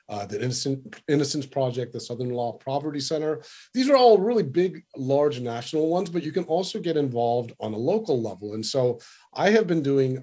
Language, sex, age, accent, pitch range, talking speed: English, male, 40-59, American, 115-140 Hz, 195 wpm